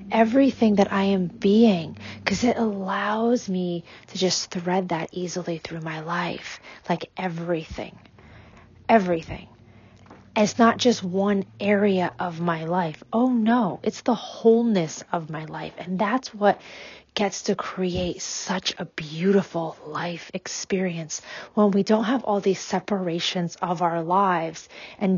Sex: female